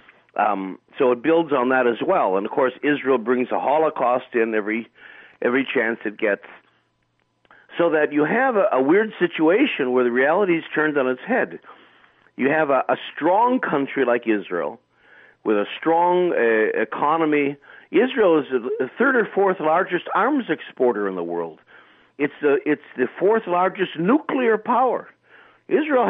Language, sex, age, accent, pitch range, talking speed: English, male, 50-69, American, 130-205 Hz, 165 wpm